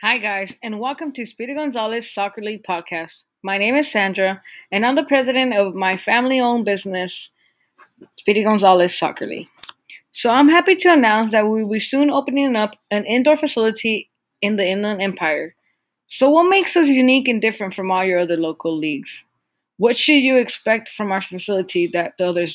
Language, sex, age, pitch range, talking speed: English, female, 20-39, 185-225 Hz, 180 wpm